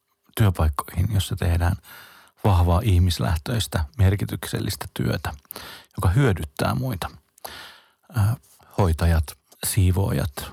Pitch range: 85-105 Hz